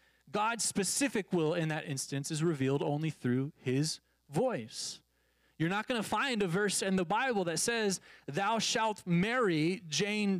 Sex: male